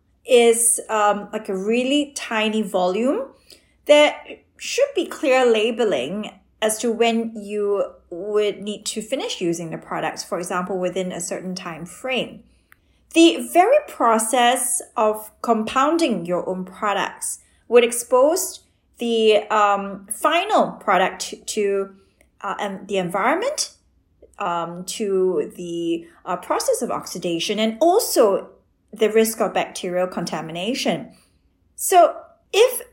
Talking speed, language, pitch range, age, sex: 115 wpm, English, 190-250 Hz, 30-49, female